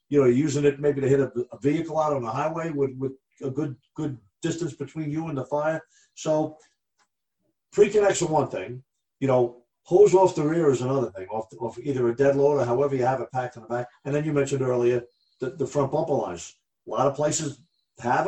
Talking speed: 225 wpm